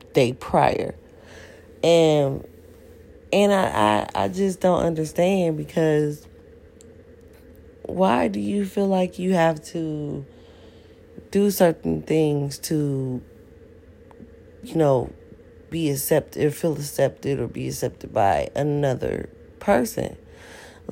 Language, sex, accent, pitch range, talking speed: English, female, American, 125-165 Hz, 105 wpm